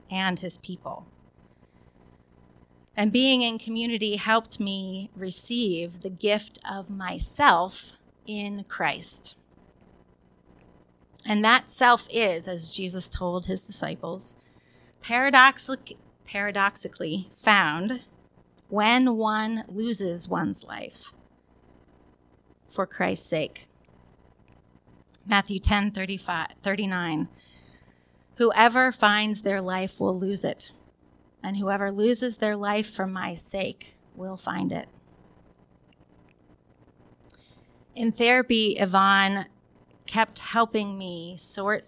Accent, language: American, English